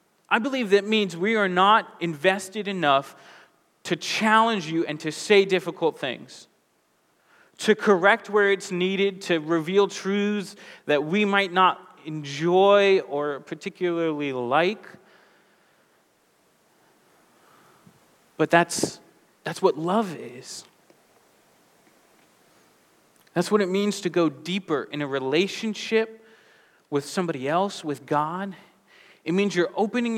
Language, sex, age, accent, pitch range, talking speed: English, male, 30-49, American, 145-200 Hz, 115 wpm